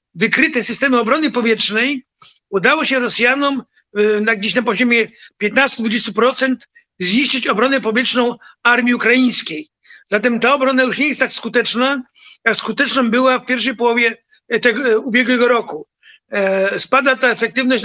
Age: 50-69